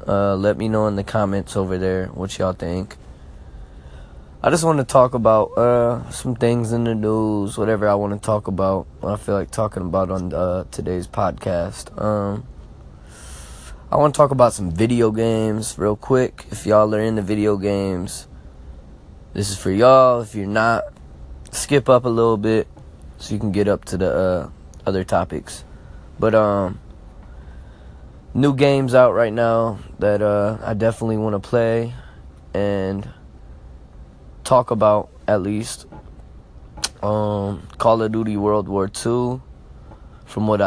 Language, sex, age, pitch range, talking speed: English, male, 20-39, 95-110 Hz, 160 wpm